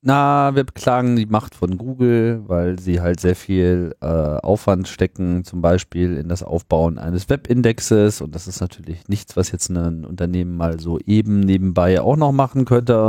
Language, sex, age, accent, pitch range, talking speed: German, male, 40-59, German, 90-115 Hz, 180 wpm